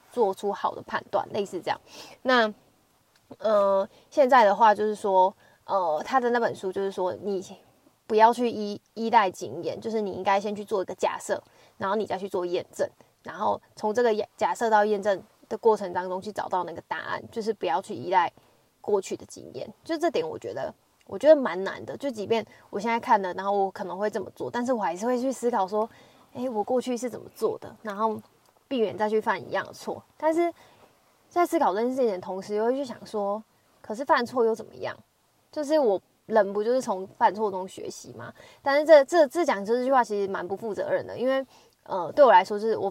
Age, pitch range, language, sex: 20-39, 200-255 Hz, Chinese, female